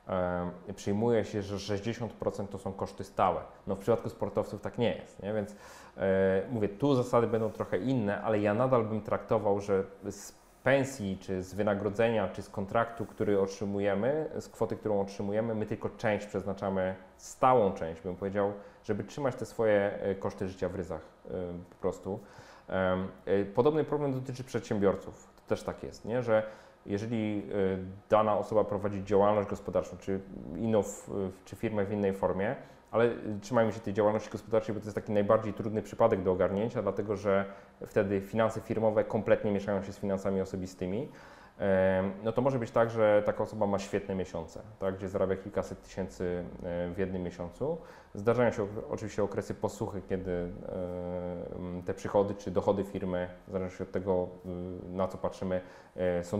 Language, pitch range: Polish, 95-110 Hz